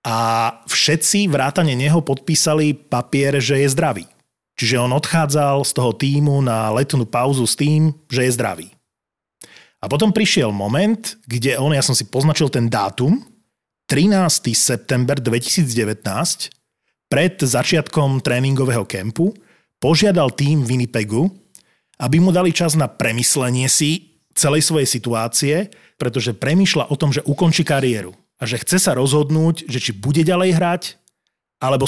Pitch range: 125-155 Hz